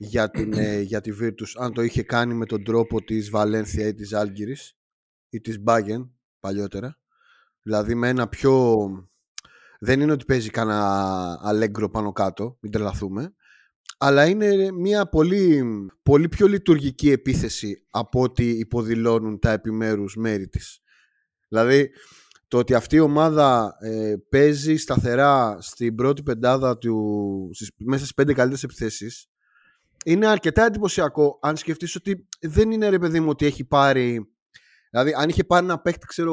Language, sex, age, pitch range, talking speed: Greek, male, 30-49, 115-175 Hz, 150 wpm